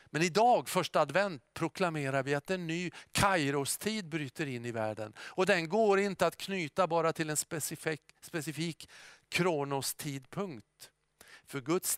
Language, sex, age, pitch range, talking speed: Swedish, male, 50-69, 135-170 Hz, 145 wpm